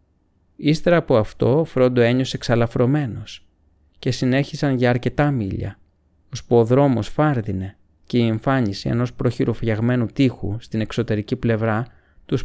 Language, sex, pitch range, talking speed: Greek, male, 90-130 Hz, 125 wpm